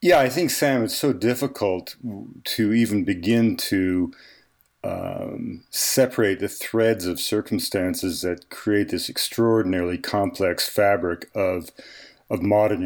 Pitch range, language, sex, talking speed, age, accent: 90-110 Hz, English, male, 120 wpm, 50-69, American